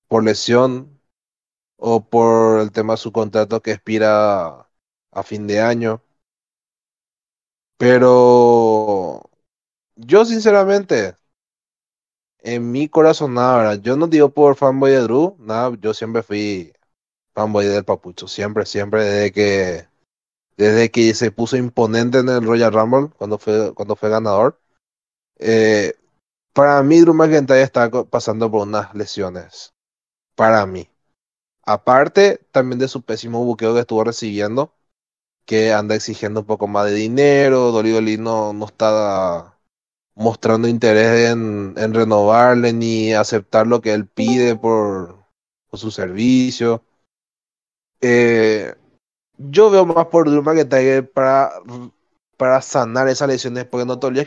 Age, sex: 30-49, male